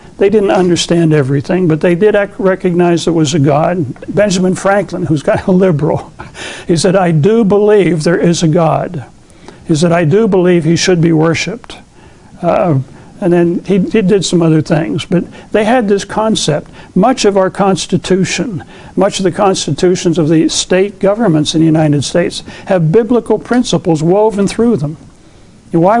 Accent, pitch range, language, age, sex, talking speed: American, 165-200 Hz, English, 60-79, male, 170 wpm